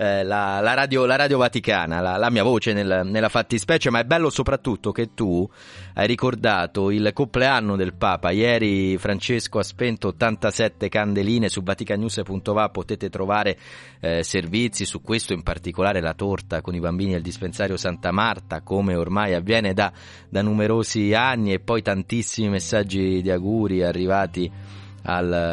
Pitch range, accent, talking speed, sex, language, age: 90-115 Hz, native, 150 wpm, male, Italian, 30-49